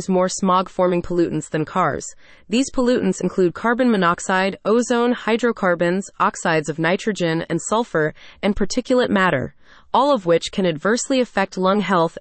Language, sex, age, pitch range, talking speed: English, female, 30-49, 165-225 Hz, 140 wpm